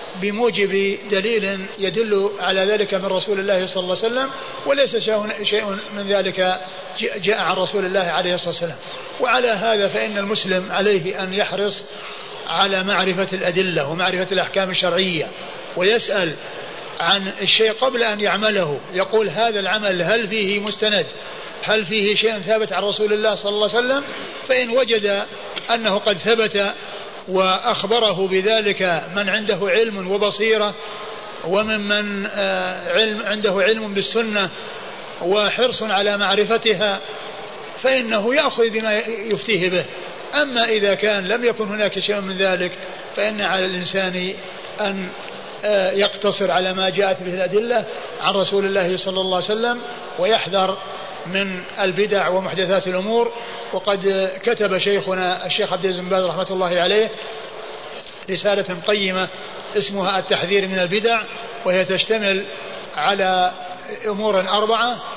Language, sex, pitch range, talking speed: Arabic, male, 190-215 Hz, 125 wpm